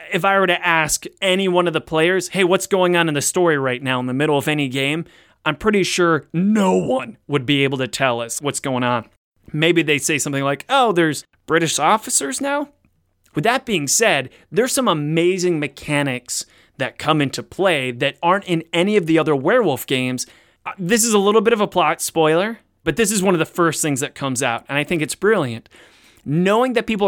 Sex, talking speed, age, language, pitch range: male, 215 wpm, 20-39, English, 140-185 Hz